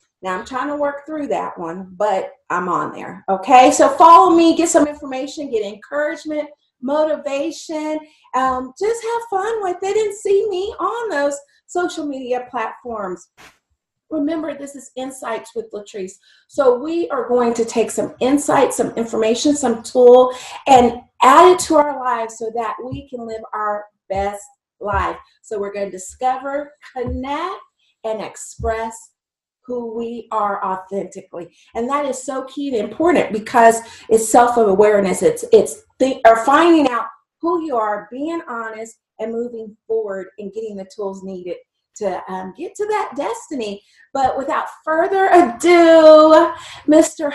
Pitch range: 225-315 Hz